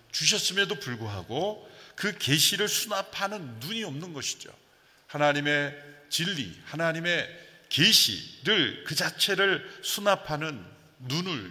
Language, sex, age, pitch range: Korean, male, 40-59, 110-165 Hz